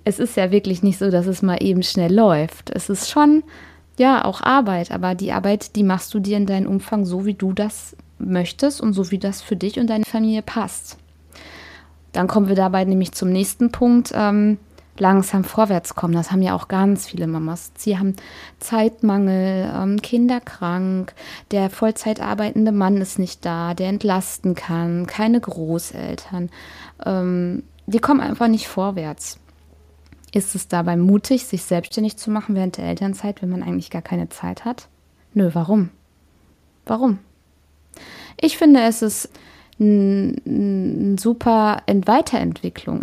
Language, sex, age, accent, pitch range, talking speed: German, female, 20-39, German, 180-220 Hz, 155 wpm